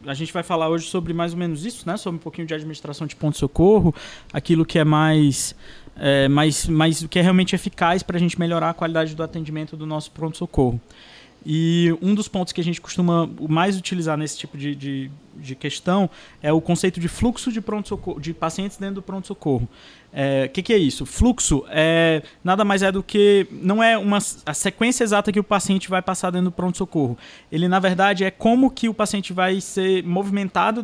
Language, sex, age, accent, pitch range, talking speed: Portuguese, male, 20-39, Brazilian, 155-195 Hz, 200 wpm